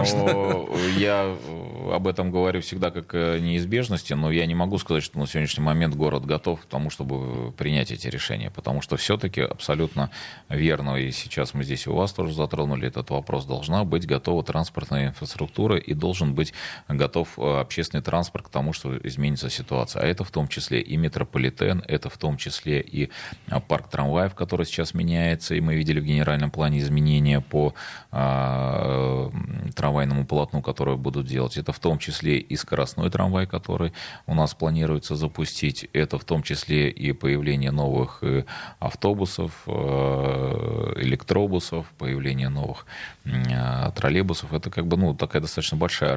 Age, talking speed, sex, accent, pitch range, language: 30-49, 150 wpm, male, native, 70-85 Hz, Russian